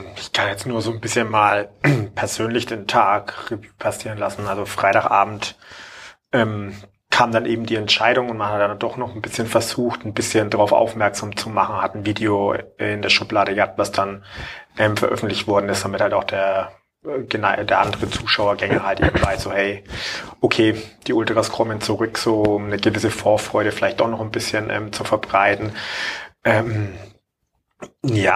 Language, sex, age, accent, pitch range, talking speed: German, male, 30-49, German, 100-115 Hz, 170 wpm